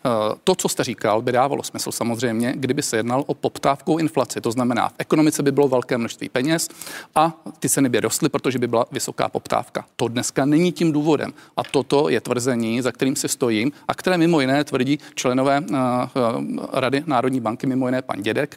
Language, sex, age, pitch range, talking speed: Czech, male, 40-59, 125-150 Hz, 195 wpm